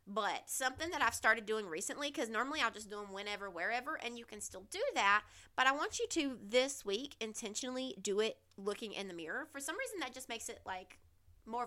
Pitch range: 185-245 Hz